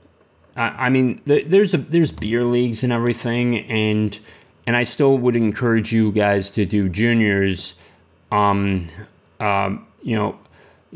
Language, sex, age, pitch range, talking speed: English, male, 30-49, 95-120 Hz, 130 wpm